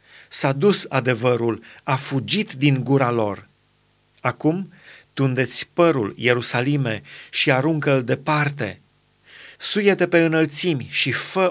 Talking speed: 110 wpm